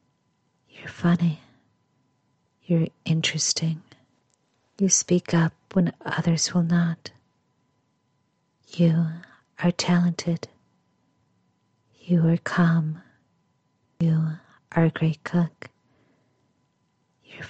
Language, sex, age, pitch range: English, female, 50-69, 140-170 Hz